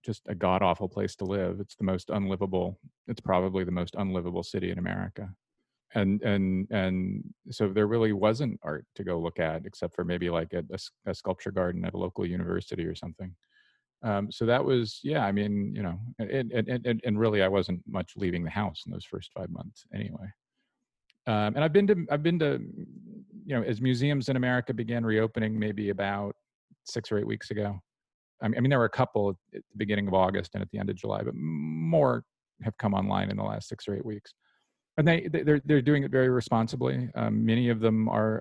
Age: 40-59